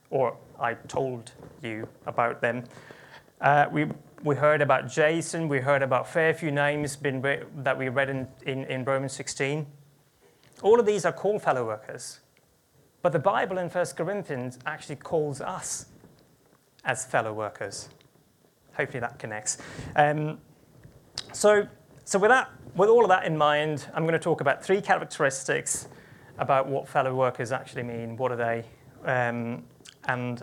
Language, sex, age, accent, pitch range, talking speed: English, male, 30-49, British, 130-165 Hz, 155 wpm